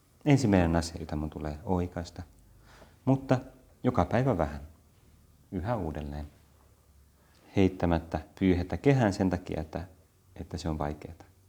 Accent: native